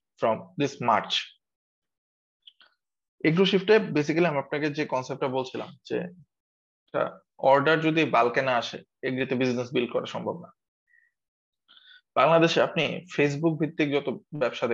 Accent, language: native, Bengali